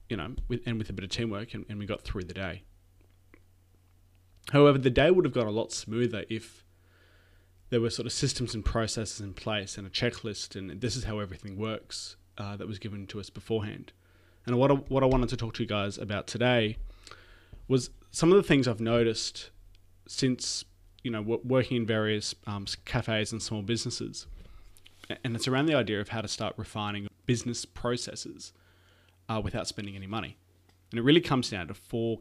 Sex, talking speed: male, 190 wpm